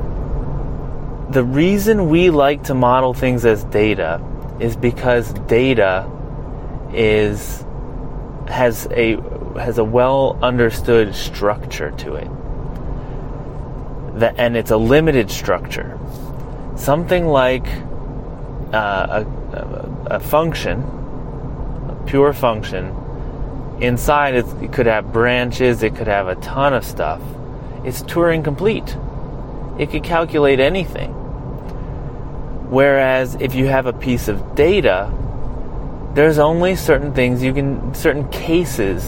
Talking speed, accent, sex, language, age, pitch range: 110 wpm, American, male, English, 30-49, 115-145 Hz